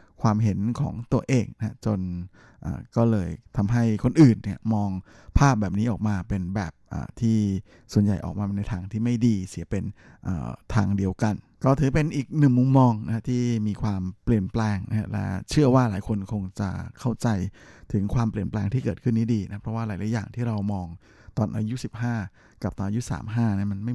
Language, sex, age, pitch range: Thai, male, 20-39, 100-125 Hz